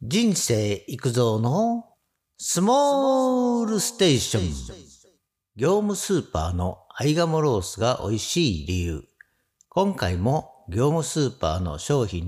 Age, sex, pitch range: 50-69, male, 95-150 Hz